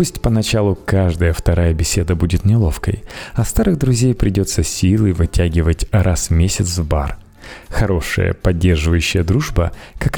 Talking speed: 135 wpm